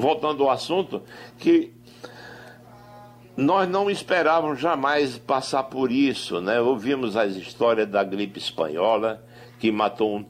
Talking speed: 120 wpm